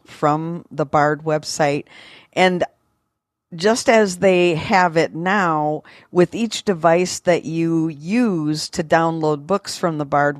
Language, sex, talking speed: English, female, 135 wpm